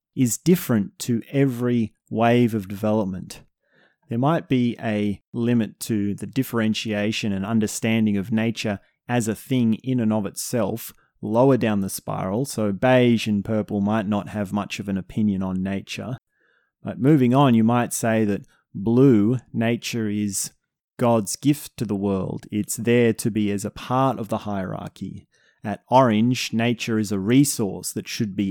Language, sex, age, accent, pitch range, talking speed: English, male, 30-49, Australian, 105-125 Hz, 160 wpm